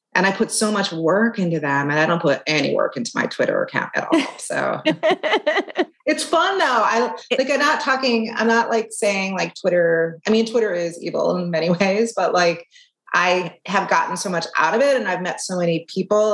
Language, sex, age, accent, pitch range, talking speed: English, female, 30-49, American, 165-225 Hz, 215 wpm